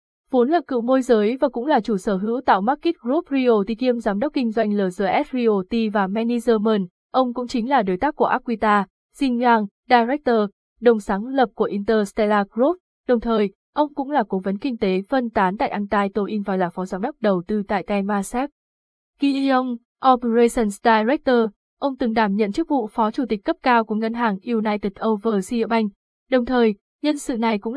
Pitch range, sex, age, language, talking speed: 210-255 Hz, female, 20-39, Vietnamese, 195 wpm